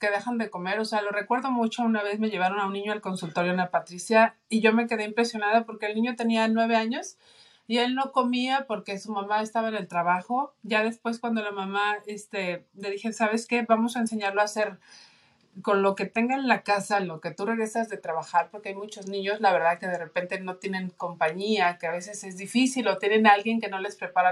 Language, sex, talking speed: Spanish, male, 235 wpm